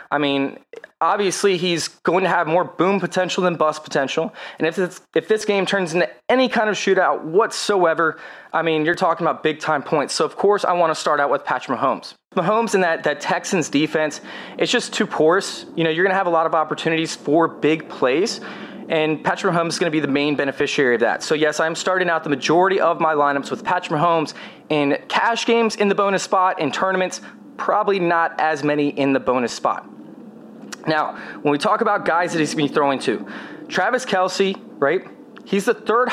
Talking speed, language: 210 wpm, English